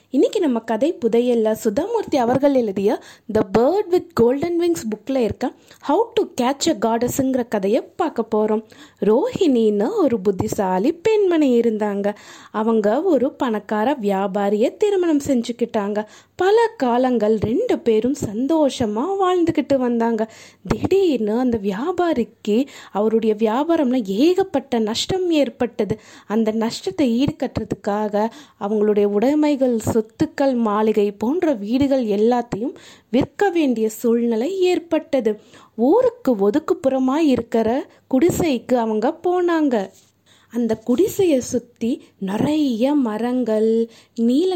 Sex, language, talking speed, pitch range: female, Tamil, 100 wpm, 220-305 Hz